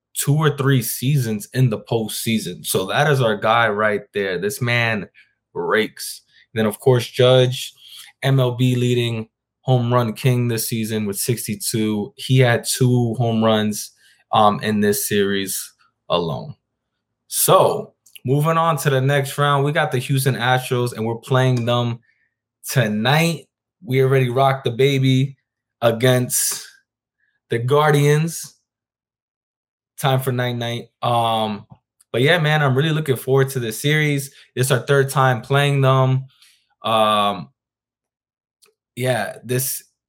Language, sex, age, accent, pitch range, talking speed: English, male, 20-39, American, 110-135 Hz, 135 wpm